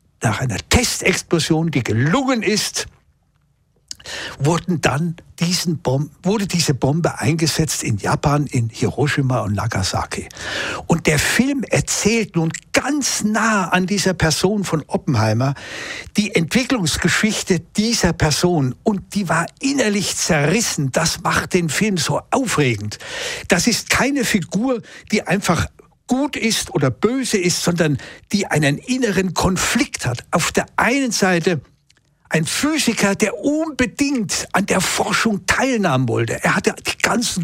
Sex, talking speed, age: male, 130 wpm, 60-79